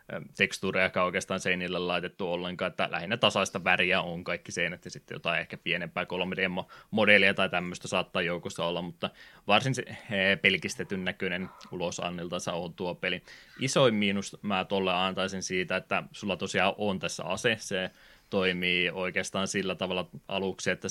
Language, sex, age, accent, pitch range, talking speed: Finnish, male, 20-39, native, 90-100 Hz, 160 wpm